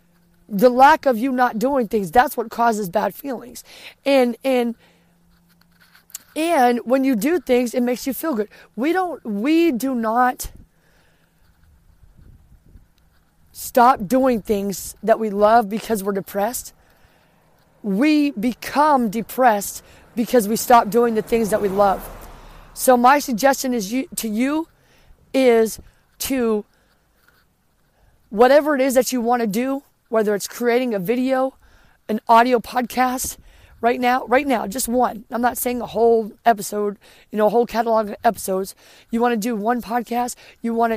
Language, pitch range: English, 210-250 Hz